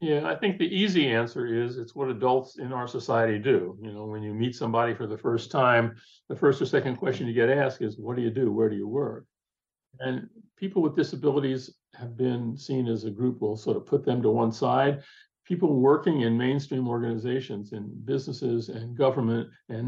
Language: English